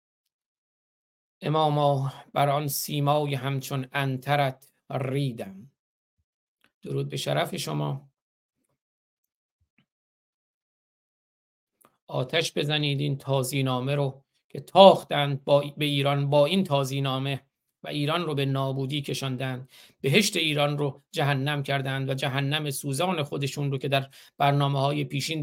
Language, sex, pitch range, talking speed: Persian, male, 135-155 Hz, 110 wpm